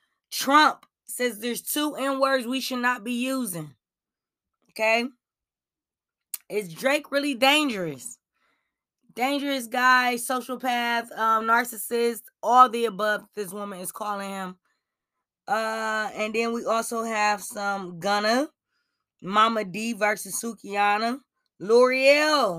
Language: English